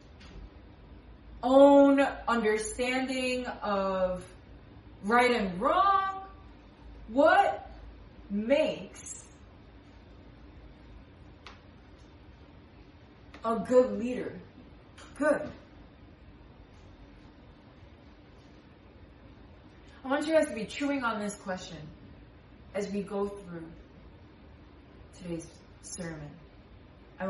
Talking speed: 65 wpm